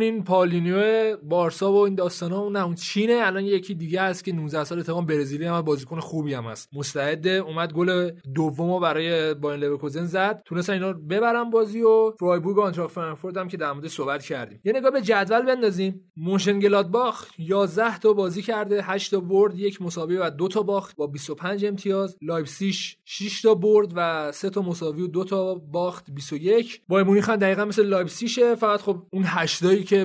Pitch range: 150-195 Hz